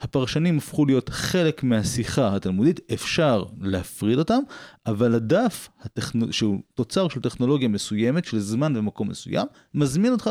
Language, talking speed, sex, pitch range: Hebrew, 130 wpm, male, 100-145 Hz